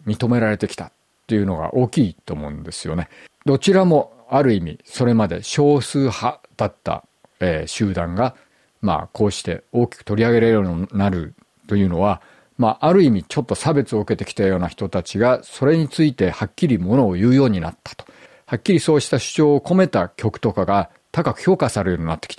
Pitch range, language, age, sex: 100-150 Hz, Japanese, 50-69, male